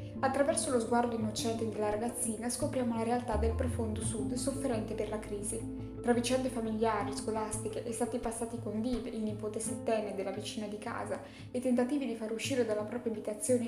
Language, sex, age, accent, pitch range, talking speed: Italian, female, 10-29, native, 210-250 Hz, 170 wpm